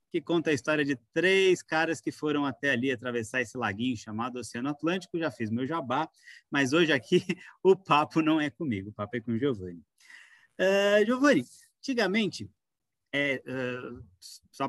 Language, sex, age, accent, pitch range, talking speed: Portuguese, male, 20-39, Brazilian, 125-190 Hz, 155 wpm